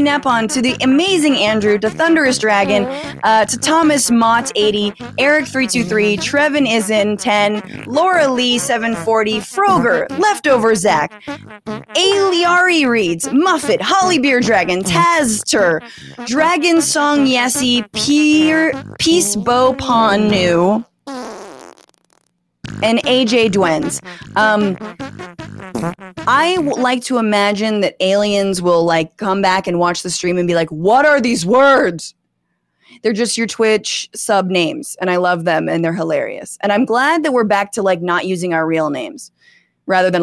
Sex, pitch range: female, 200-300 Hz